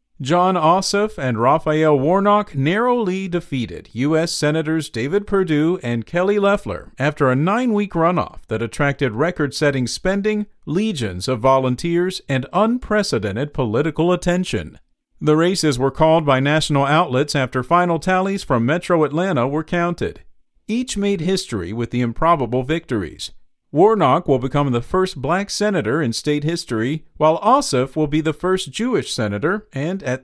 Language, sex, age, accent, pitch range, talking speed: English, male, 40-59, American, 135-180 Hz, 140 wpm